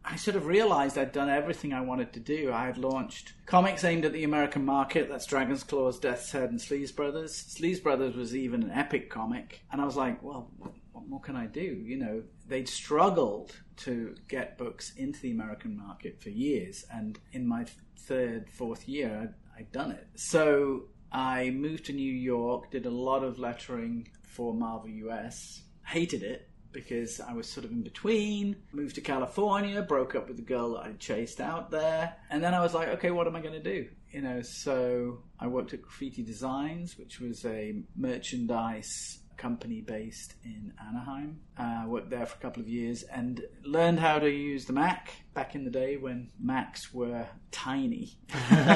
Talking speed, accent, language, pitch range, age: 195 wpm, British, English, 125-175 Hz, 30-49